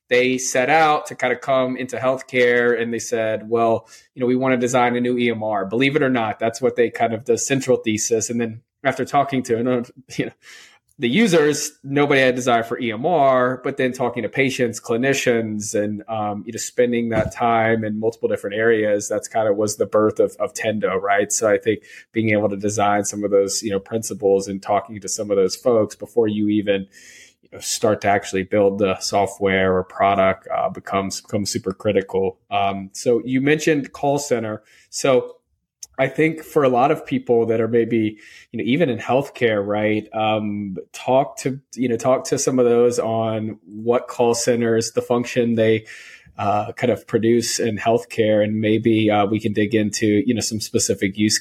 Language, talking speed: English, 195 wpm